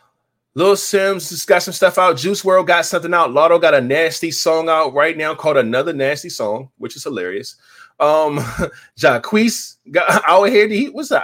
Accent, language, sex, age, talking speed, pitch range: American, English, male, 20-39, 180 wpm, 120-170 Hz